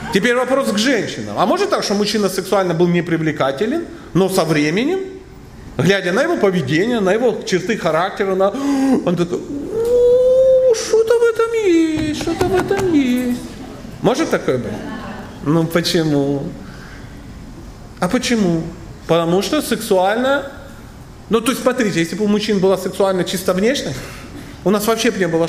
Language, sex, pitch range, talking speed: Russian, male, 180-255 Hz, 150 wpm